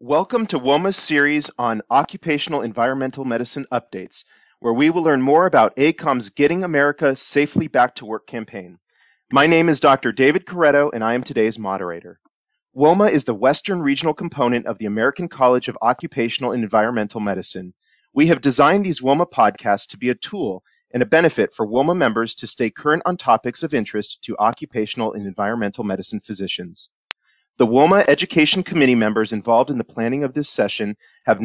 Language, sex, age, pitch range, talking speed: English, male, 30-49, 115-150 Hz, 175 wpm